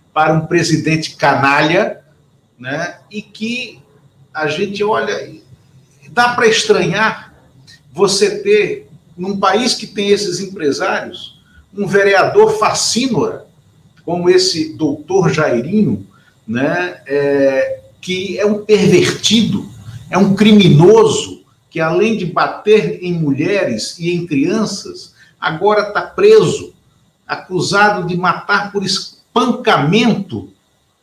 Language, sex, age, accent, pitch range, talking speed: Portuguese, male, 60-79, Brazilian, 150-210 Hz, 105 wpm